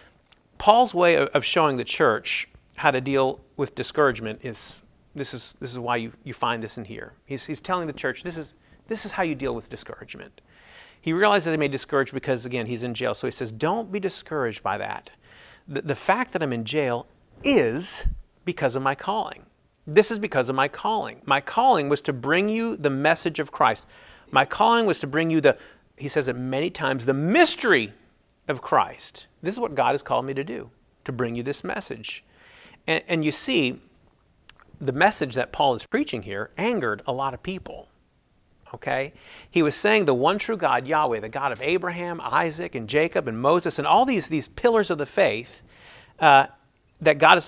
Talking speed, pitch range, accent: 200 wpm, 130-175 Hz, American